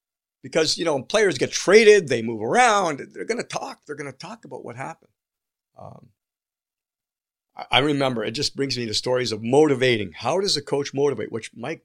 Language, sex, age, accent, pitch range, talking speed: English, male, 50-69, American, 110-145 Hz, 190 wpm